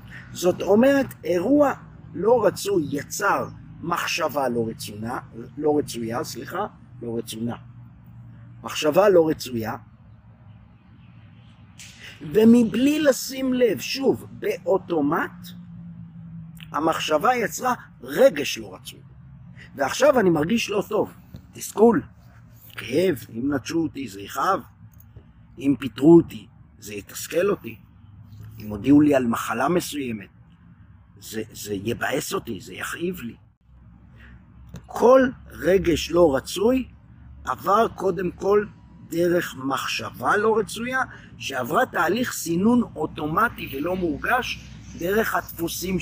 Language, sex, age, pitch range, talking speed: Hebrew, male, 50-69, 115-180 Hz, 100 wpm